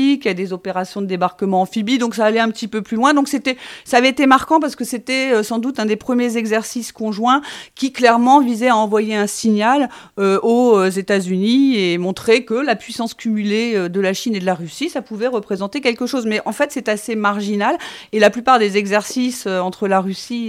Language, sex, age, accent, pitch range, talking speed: French, female, 40-59, French, 195-245 Hz, 225 wpm